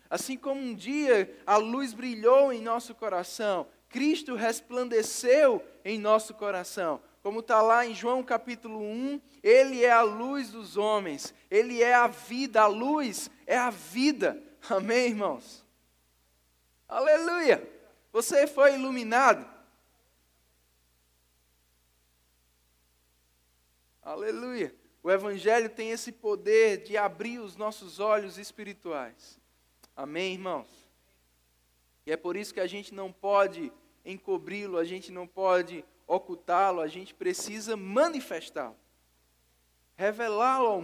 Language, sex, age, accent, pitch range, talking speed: English, male, 10-29, Brazilian, 155-245 Hz, 115 wpm